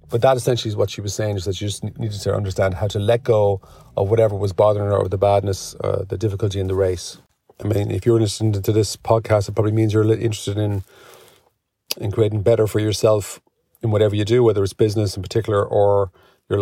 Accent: Irish